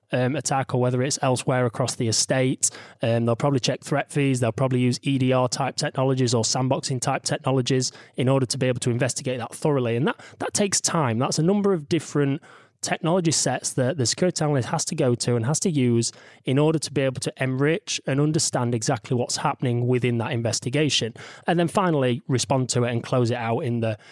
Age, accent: 20-39, British